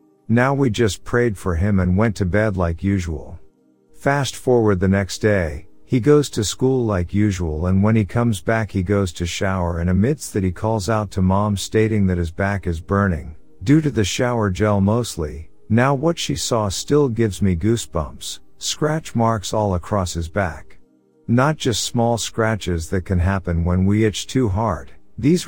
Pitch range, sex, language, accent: 90-115 Hz, male, English, American